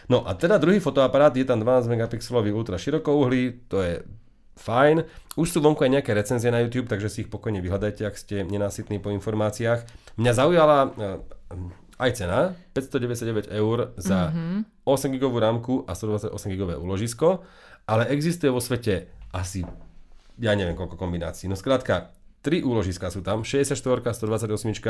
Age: 40-59